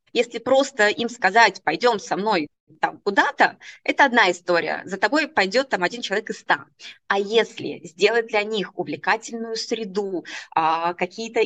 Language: Russian